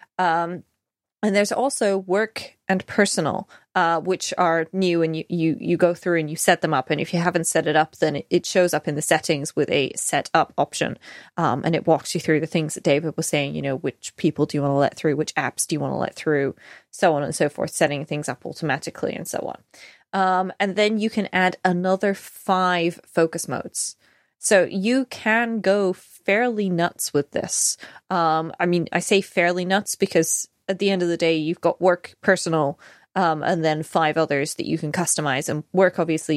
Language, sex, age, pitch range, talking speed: English, female, 20-39, 155-190 Hz, 215 wpm